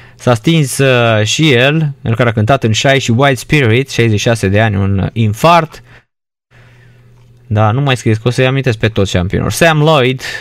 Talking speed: 185 wpm